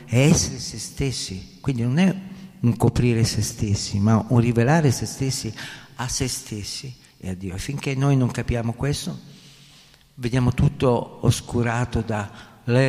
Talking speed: 140 wpm